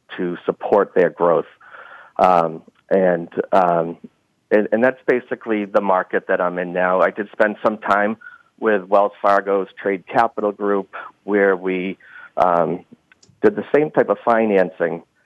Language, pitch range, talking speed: English, 95-115 Hz, 145 wpm